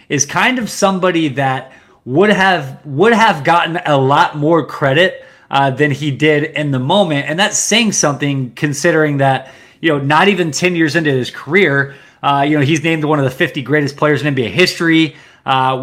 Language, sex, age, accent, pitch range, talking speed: English, male, 20-39, American, 130-175 Hz, 195 wpm